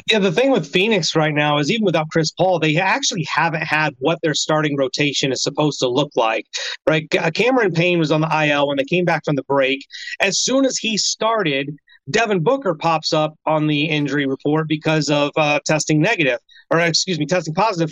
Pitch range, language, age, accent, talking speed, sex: 155-185 Hz, English, 30-49, American, 210 wpm, male